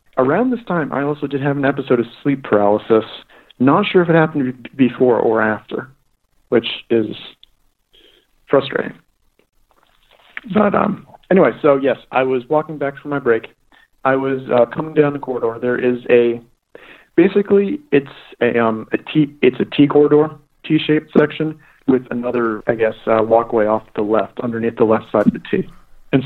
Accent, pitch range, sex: American, 115-140 Hz, male